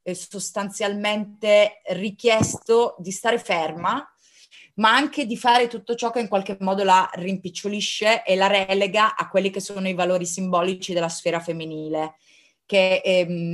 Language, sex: Italian, female